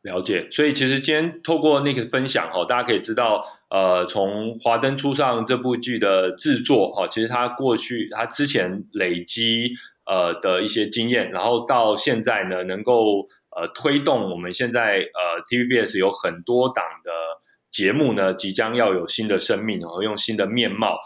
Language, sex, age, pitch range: Chinese, male, 20-39, 100-135 Hz